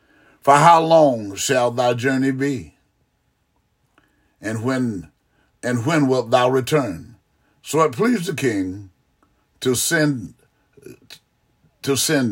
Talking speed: 110 wpm